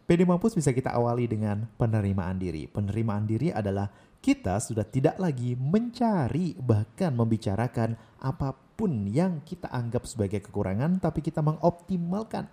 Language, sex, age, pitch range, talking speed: Indonesian, male, 30-49, 110-175 Hz, 130 wpm